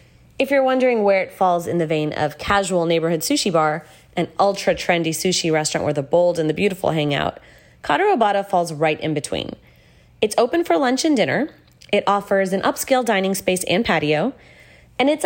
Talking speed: 180 wpm